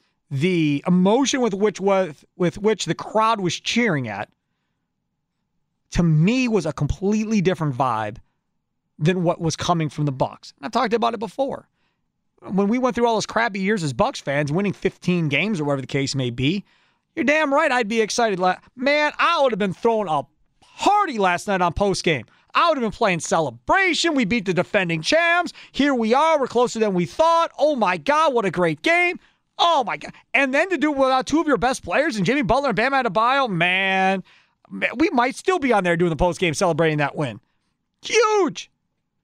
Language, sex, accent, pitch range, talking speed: English, male, American, 175-280 Hz, 195 wpm